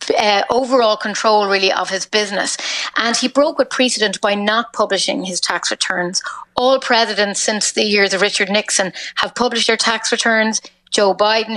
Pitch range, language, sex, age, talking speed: 200-230 Hz, English, female, 30-49, 170 wpm